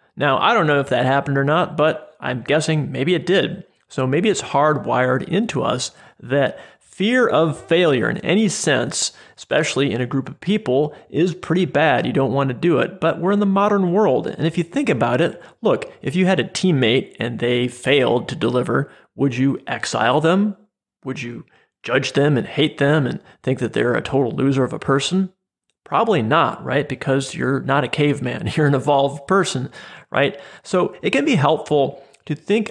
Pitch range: 130-170 Hz